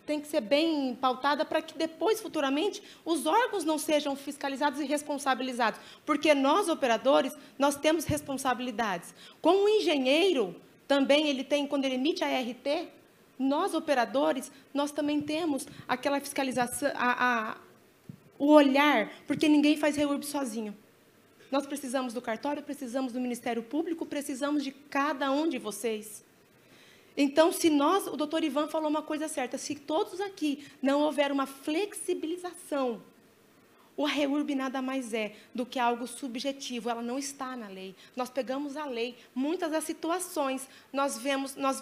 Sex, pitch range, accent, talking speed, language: female, 255-300 Hz, Brazilian, 150 wpm, Portuguese